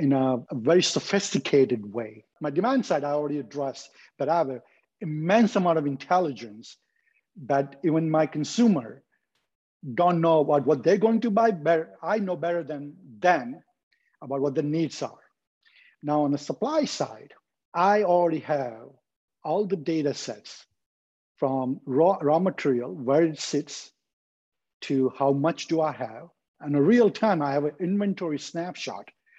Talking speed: 155 wpm